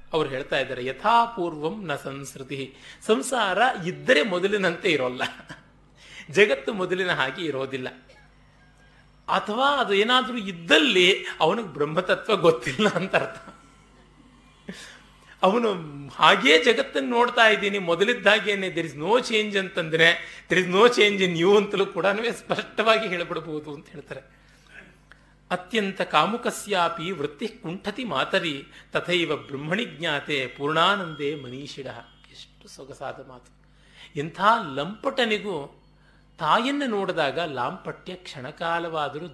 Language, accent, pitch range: Kannada, native, 145-205 Hz